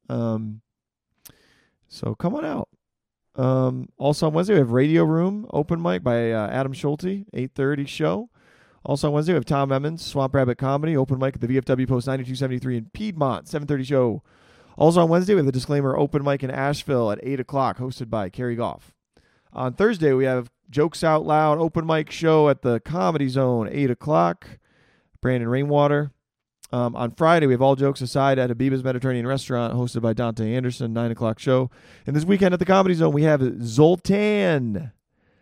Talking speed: 185 wpm